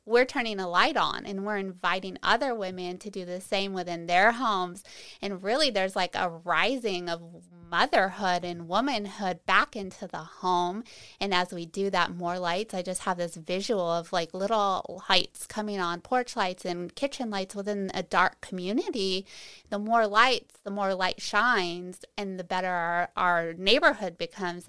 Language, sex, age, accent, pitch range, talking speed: English, female, 20-39, American, 175-205 Hz, 175 wpm